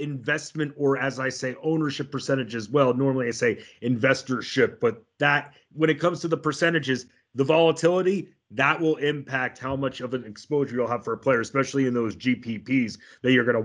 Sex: male